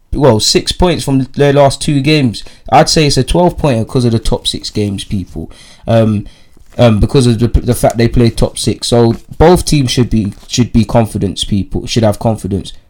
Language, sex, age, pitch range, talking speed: English, male, 20-39, 110-130 Hz, 205 wpm